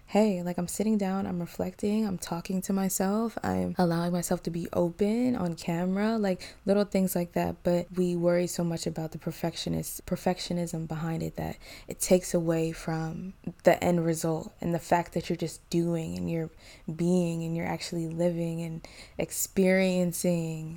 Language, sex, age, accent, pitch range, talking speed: English, female, 20-39, American, 170-190 Hz, 170 wpm